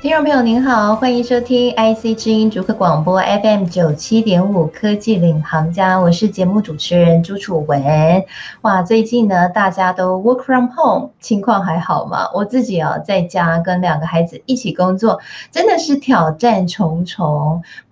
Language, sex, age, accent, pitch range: Chinese, female, 20-39, native, 170-240 Hz